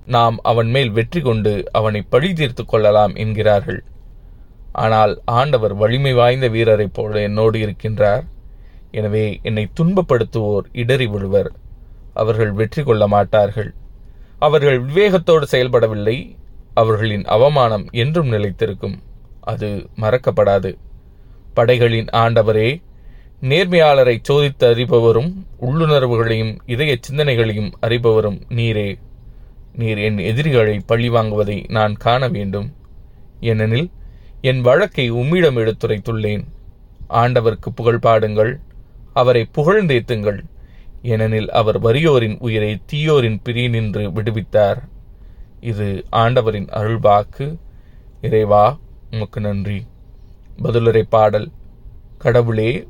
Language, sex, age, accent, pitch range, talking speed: Tamil, male, 20-39, native, 105-125 Hz, 90 wpm